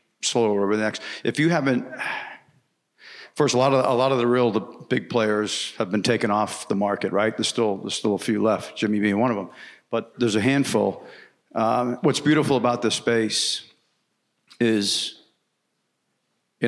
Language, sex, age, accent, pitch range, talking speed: English, male, 50-69, American, 105-120 Hz, 180 wpm